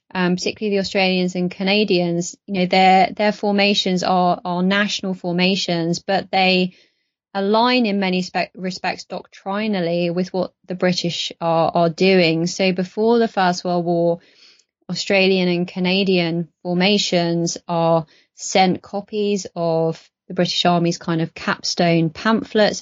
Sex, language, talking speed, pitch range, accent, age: female, English, 135 wpm, 170-200 Hz, British, 20-39